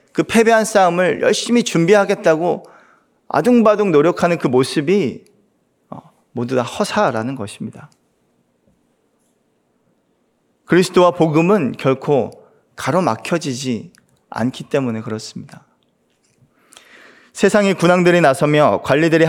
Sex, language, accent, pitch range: male, Korean, native, 140-190 Hz